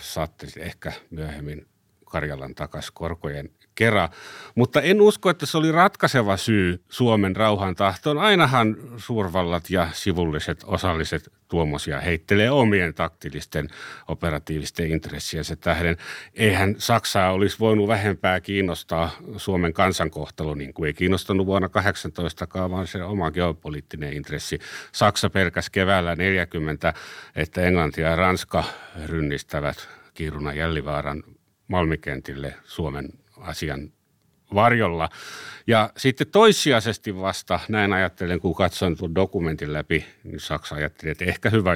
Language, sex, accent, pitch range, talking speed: Finnish, male, native, 75-100 Hz, 115 wpm